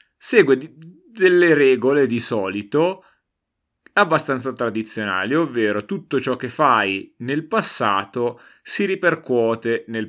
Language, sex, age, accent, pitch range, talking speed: Italian, male, 30-49, native, 110-140 Hz, 100 wpm